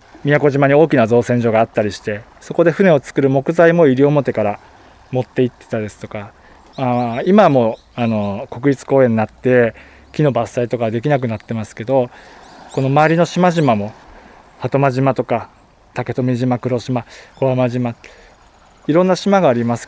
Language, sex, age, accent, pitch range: Japanese, male, 20-39, native, 110-145 Hz